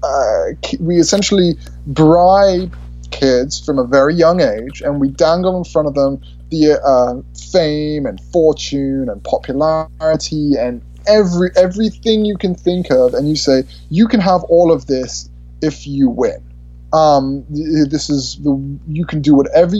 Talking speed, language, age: 155 wpm, English, 20-39